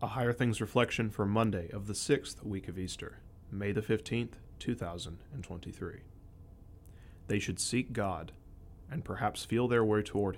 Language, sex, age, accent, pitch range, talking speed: English, male, 30-49, American, 90-115 Hz, 150 wpm